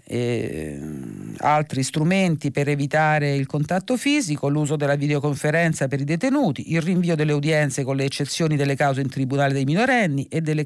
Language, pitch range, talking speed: Italian, 135-170 Hz, 165 wpm